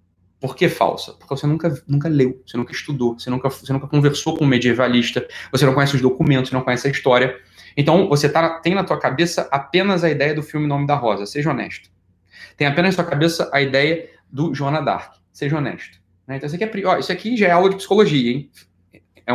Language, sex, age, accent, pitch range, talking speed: Portuguese, male, 20-39, Brazilian, 120-165 Hz, 225 wpm